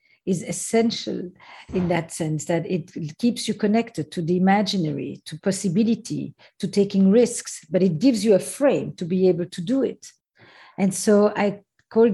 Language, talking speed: English, 170 wpm